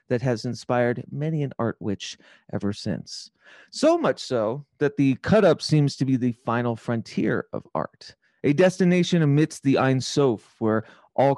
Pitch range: 120-160 Hz